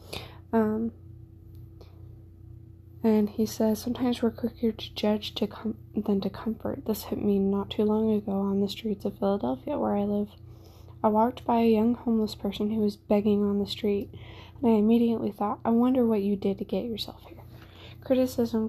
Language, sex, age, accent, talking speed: English, female, 20-39, American, 175 wpm